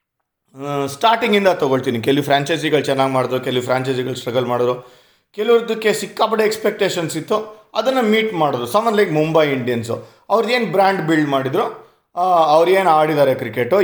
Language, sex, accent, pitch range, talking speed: Kannada, male, native, 135-190 Hz, 125 wpm